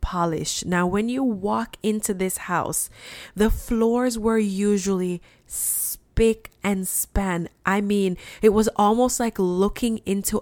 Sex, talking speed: female, 130 wpm